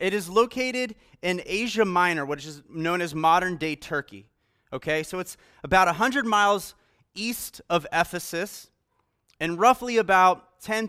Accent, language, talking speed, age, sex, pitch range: American, English, 140 wpm, 30-49, male, 155-215 Hz